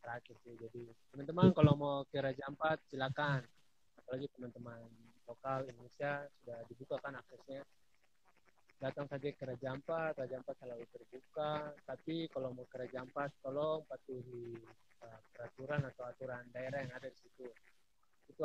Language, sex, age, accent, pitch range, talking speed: Indonesian, male, 20-39, native, 125-145 Hz, 140 wpm